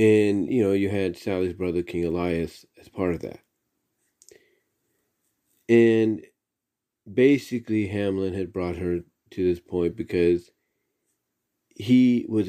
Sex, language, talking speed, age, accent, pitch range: male, English, 120 wpm, 40-59, American, 90-115 Hz